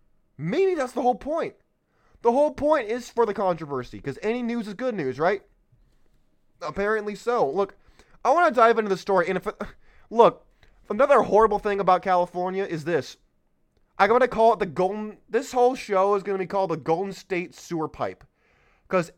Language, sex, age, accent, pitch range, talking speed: English, male, 20-39, American, 170-210 Hz, 190 wpm